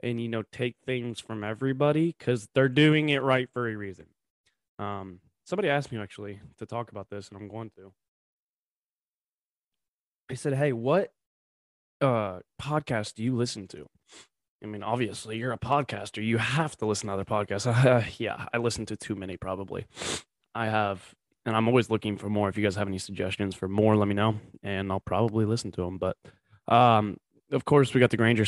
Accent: American